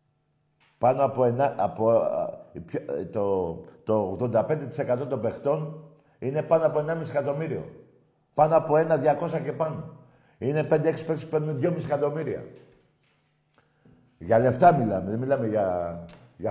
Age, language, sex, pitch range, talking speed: 60-79, Greek, male, 110-150 Hz, 115 wpm